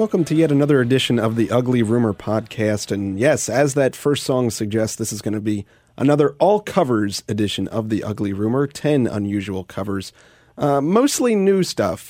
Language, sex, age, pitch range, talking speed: English, male, 30-49, 100-125 Hz, 180 wpm